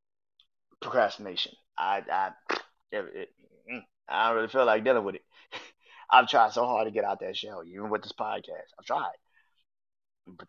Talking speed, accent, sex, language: 155 wpm, American, male, English